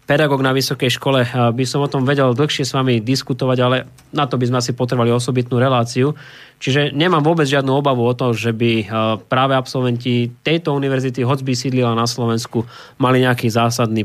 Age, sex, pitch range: 20-39, male, 120-140 Hz